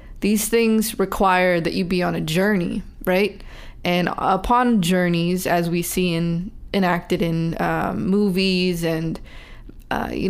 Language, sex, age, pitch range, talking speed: English, female, 20-39, 175-195 Hz, 135 wpm